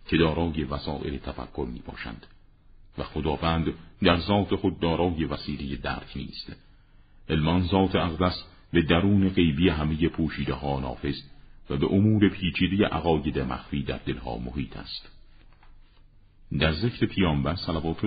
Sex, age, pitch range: male, 50-69, 70-85 Hz